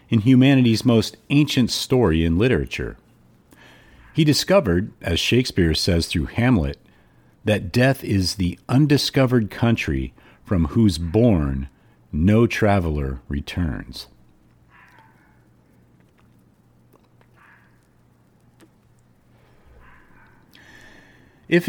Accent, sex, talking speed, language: American, male, 75 wpm, English